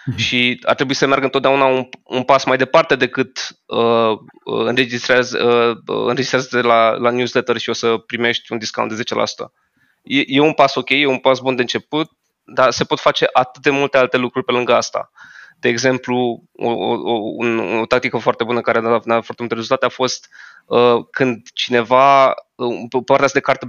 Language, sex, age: Romanian, male, 20-39